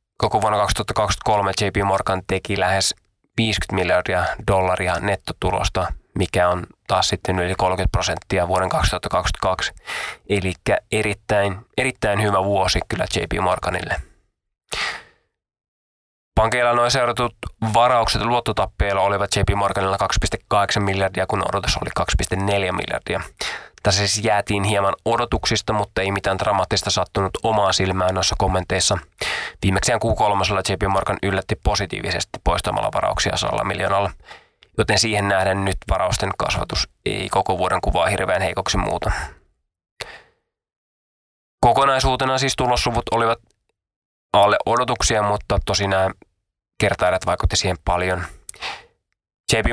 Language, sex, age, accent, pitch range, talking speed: Finnish, male, 20-39, native, 95-105 Hz, 115 wpm